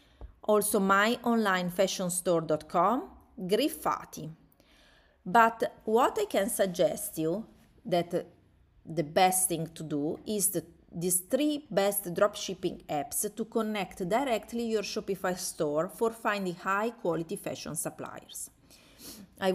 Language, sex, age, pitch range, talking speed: English, female, 30-49, 165-210 Hz, 115 wpm